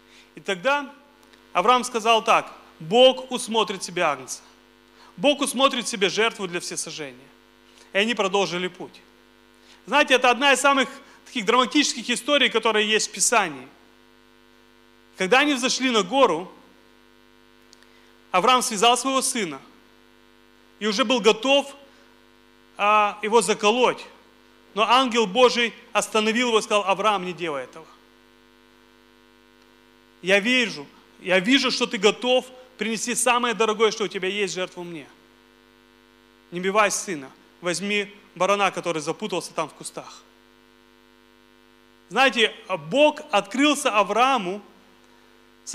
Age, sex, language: 30-49, male, Russian